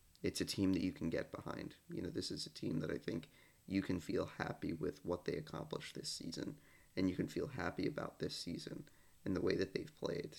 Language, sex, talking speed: English, male, 235 wpm